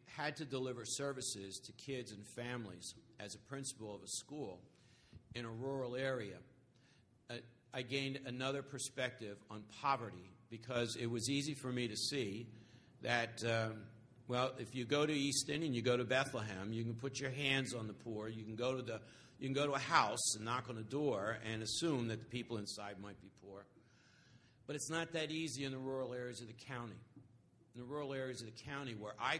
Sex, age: male, 60-79